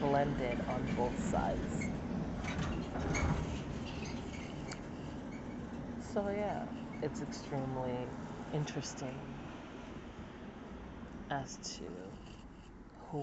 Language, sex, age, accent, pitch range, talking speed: English, female, 40-59, American, 95-125 Hz, 55 wpm